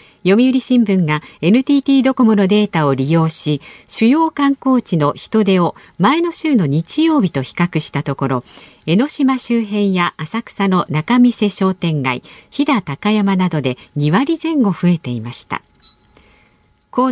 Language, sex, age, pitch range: Japanese, female, 50-69, 160-255 Hz